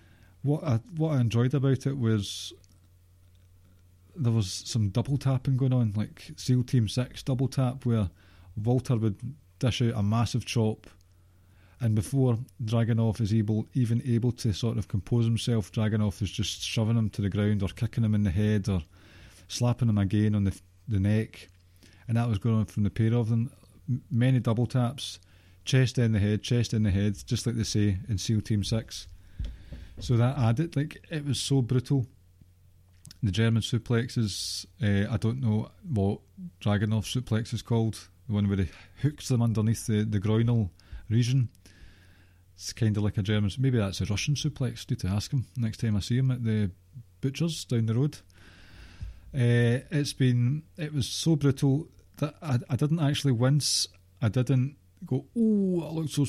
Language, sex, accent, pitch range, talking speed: English, male, British, 95-125 Hz, 180 wpm